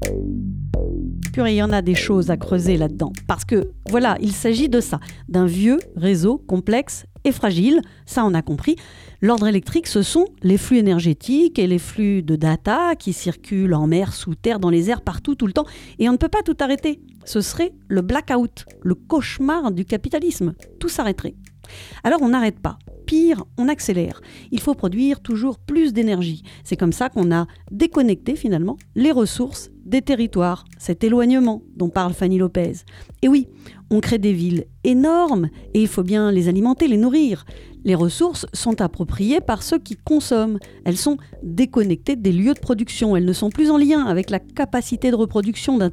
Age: 40-59